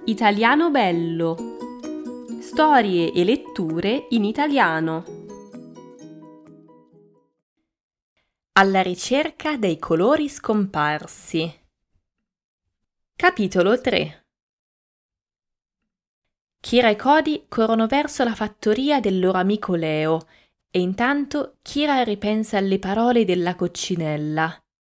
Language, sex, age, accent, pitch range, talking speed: Italian, female, 20-39, native, 170-240 Hz, 80 wpm